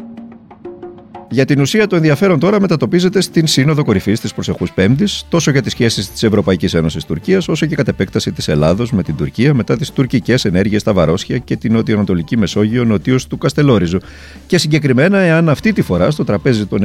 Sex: male